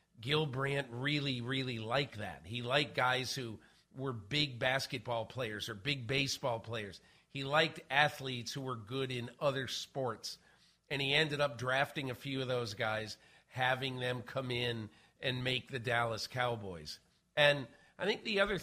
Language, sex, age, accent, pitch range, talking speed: English, male, 50-69, American, 120-140 Hz, 165 wpm